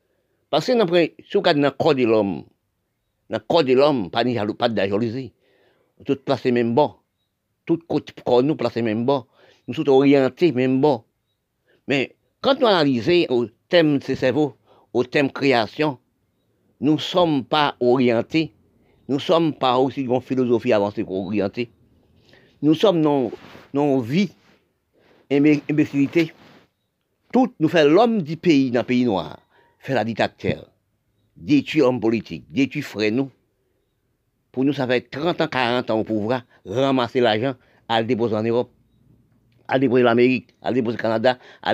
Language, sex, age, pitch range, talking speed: French, male, 50-69, 115-150 Hz, 150 wpm